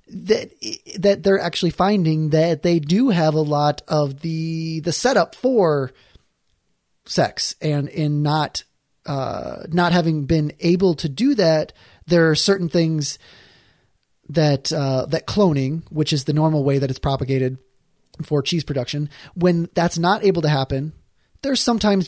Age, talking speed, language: 30-49, 150 wpm, English